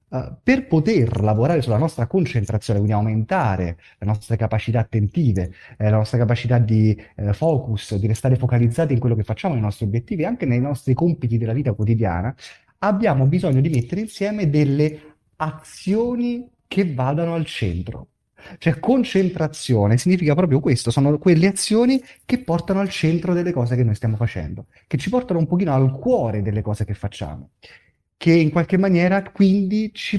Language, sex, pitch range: Italian, male, 110-165 Hz